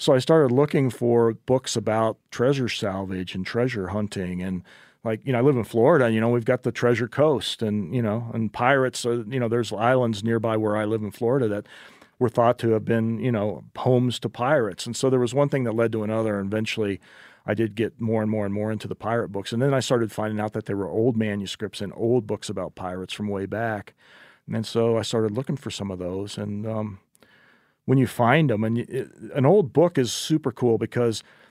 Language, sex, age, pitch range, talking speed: English, male, 40-59, 105-125 Hz, 230 wpm